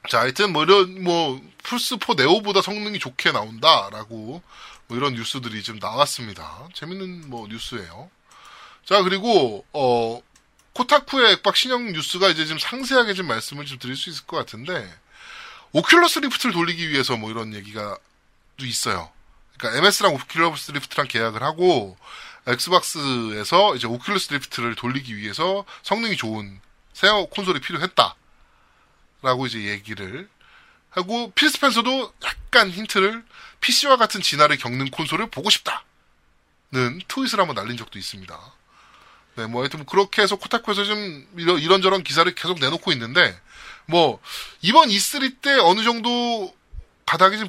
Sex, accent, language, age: male, native, Korean, 20-39